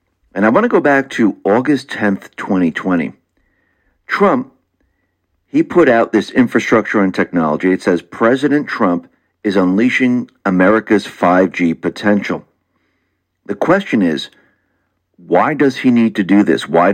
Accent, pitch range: American, 95-120 Hz